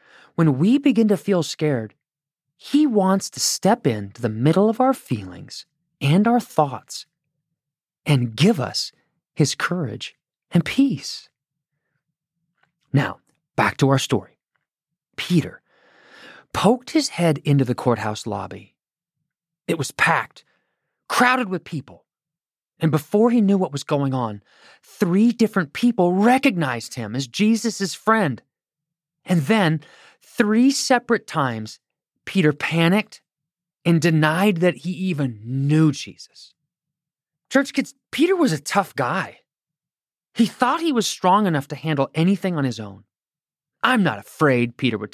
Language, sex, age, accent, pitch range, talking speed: English, male, 30-49, American, 135-195 Hz, 130 wpm